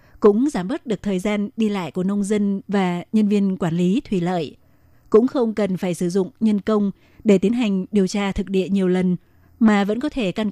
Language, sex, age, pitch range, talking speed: Vietnamese, female, 20-39, 190-220 Hz, 230 wpm